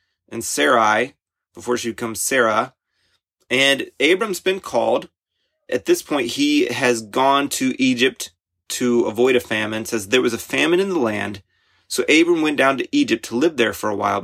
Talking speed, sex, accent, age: 175 wpm, male, American, 30-49